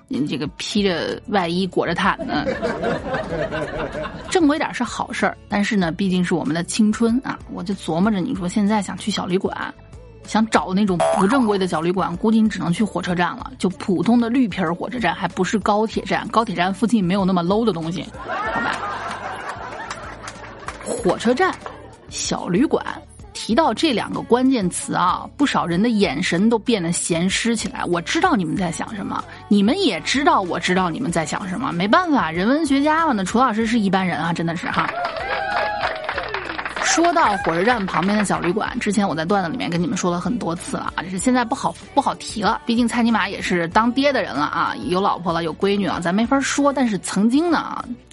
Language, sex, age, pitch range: Chinese, female, 20-39, 180-245 Hz